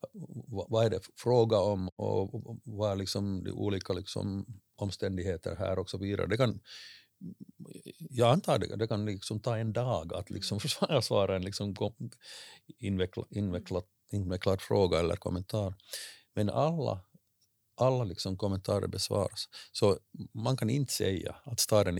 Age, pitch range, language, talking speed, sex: 50-69, 95-115 Hz, Swedish, 140 wpm, male